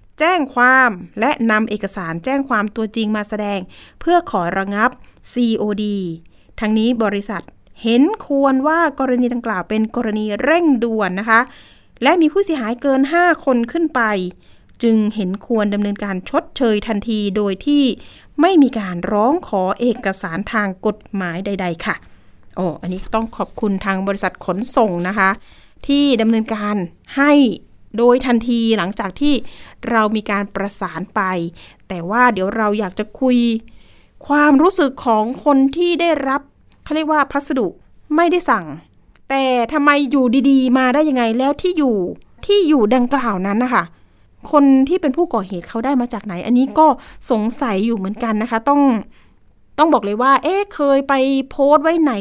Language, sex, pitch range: Thai, female, 205-280 Hz